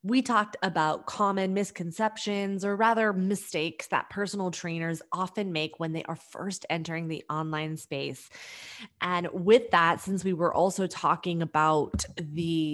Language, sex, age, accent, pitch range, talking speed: English, female, 20-39, American, 160-195 Hz, 145 wpm